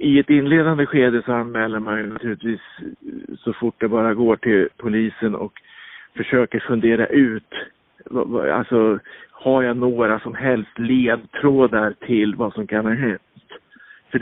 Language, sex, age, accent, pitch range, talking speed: Swedish, male, 50-69, Norwegian, 115-140 Hz, 145 wpm